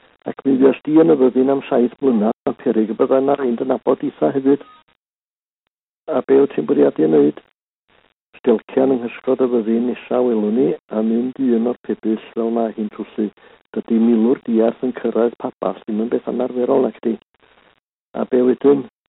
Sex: male